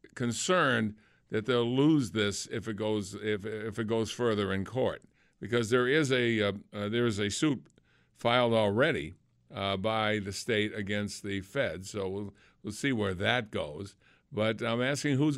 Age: 60-79